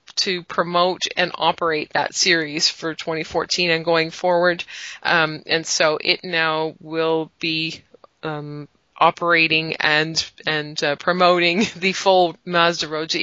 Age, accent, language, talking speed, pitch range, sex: 30-49, American, English, 125 wpm, 160-180 Hz, female